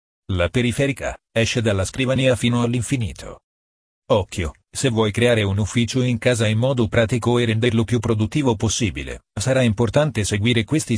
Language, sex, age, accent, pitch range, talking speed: Italian, male, 40-59, native, 100-120 Hz, 150 wpm